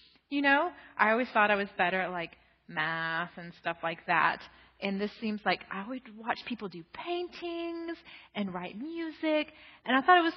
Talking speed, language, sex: 190 wpm, English, female